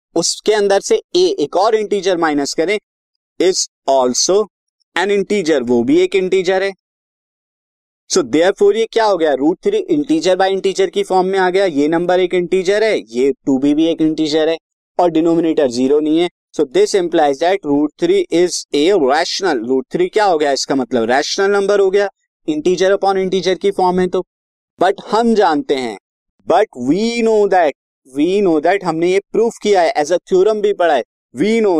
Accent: native